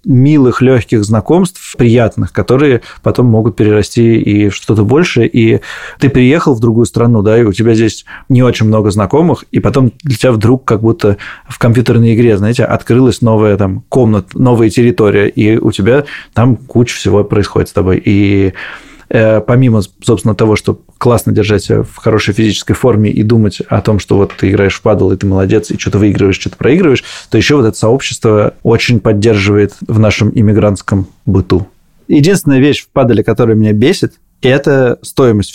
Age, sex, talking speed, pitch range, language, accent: 20-39, male, 170 wpm, 105-125 Hz, Russian, native